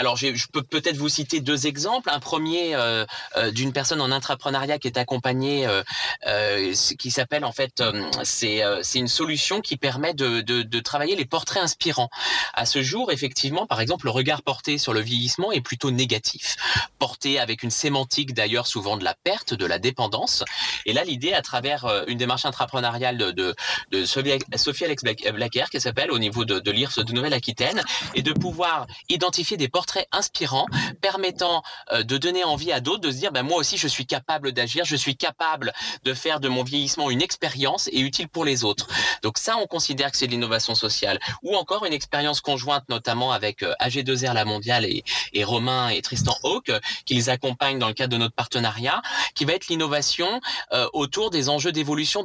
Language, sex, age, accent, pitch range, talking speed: French, male, 20-39, French, 120-155 Hz, 200 wpm